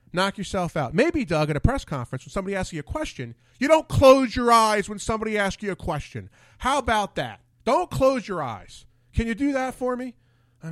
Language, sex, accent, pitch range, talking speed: English, male, American, 120-195 Hz, 225 wpm